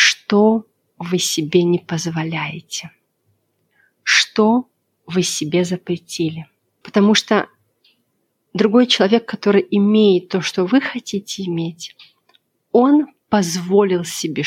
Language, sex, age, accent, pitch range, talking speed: Russian, female, 30-49, native, 170-210 Hz, 95 wpm